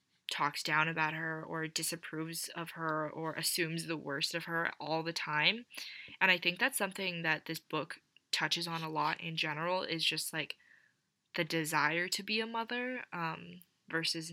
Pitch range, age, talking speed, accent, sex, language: 155-170 Hz, 10-29, 175 wpm, American, female, English